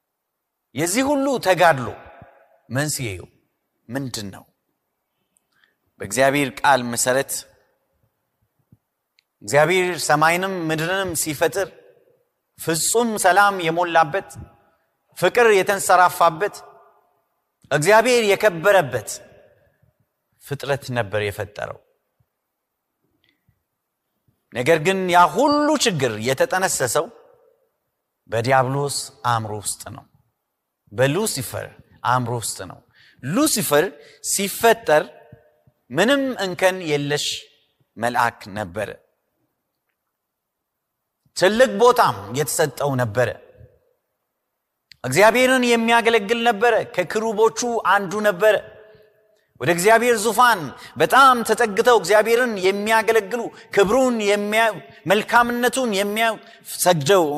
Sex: male